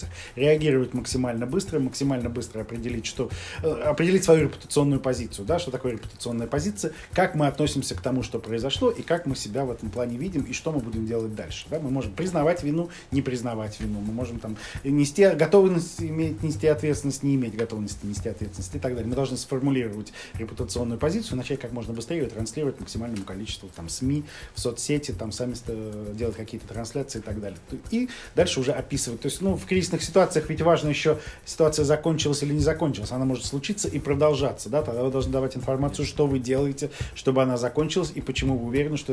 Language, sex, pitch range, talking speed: Russian, male, 115-150 Hz, 195 wpm